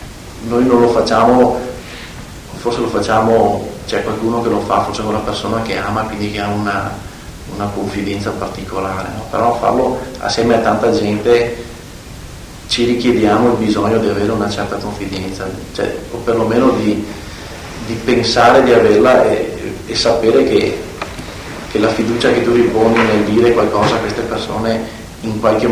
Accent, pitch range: native, 100-115 Hz